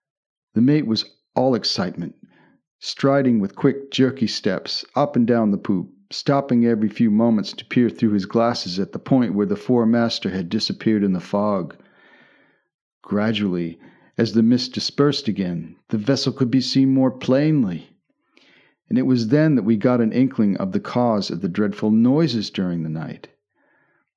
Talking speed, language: 165 wpm, English